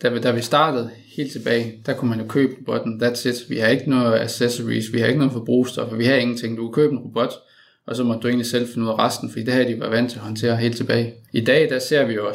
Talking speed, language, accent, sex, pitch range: 280 wpm, English, Danish, male, 115-130 Hz